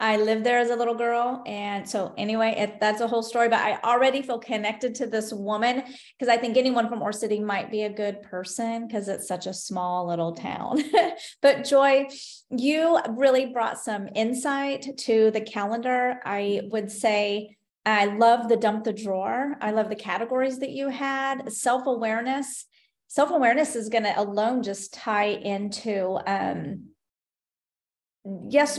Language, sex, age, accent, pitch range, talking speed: English, female, 30-49, American, 200-250 Hz, 170 wpm